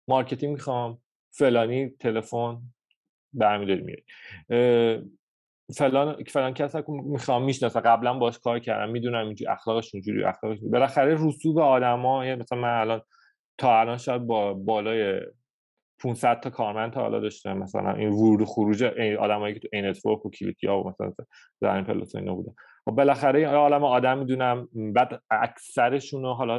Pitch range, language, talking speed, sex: 110-125 Hz, Persian, 140 wpm, male